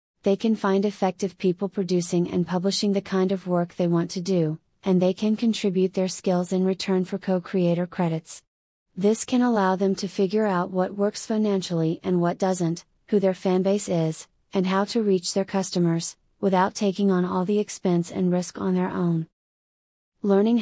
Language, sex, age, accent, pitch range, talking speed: English, female, 30-49, American, 175-200 Hz, 185 wpm